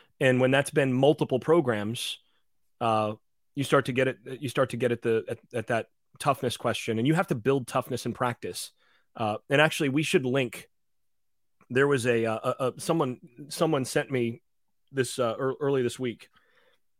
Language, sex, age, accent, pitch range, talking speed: English, male, 30-49, American, 120-145 Hz, 180 wpm